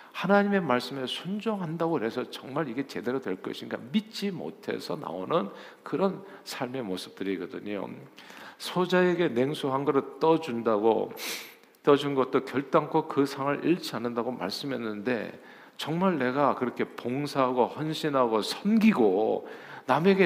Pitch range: 115-165 Hz